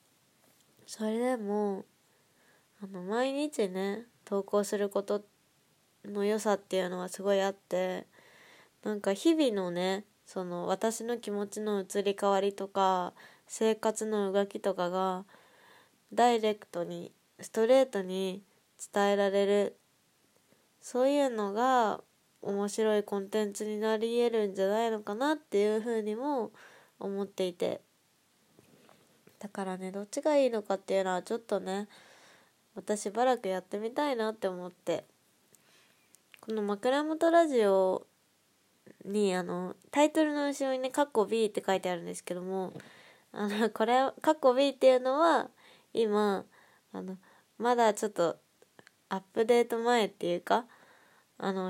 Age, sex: 20-39, female